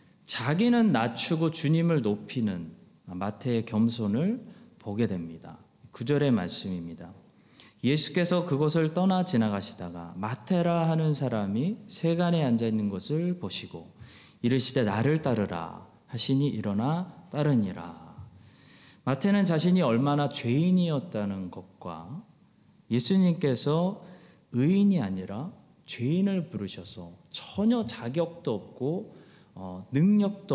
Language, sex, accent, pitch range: Korean, male, native, 110-165 Hz